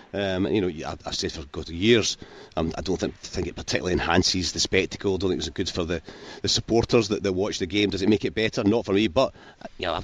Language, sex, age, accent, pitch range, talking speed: English, male, 40-59, British, 95-110 Hz, 265 wpm